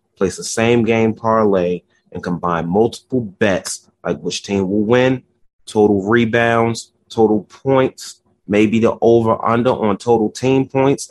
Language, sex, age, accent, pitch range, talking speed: English, male, 30-49, American, 110-140 Hz, 135 wpm